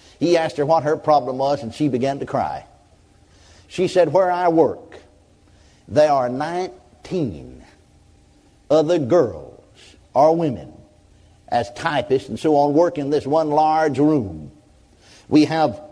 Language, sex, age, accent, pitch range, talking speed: English, male, 50-69, American, 125-160 Hz, 140 wpm